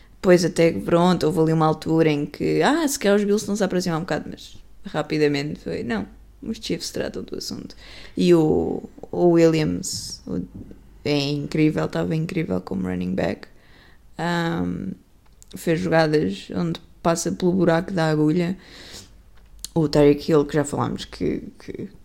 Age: 20-39